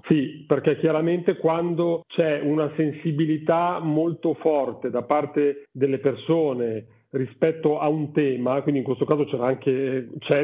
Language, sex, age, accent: Italian, male, 40-59, native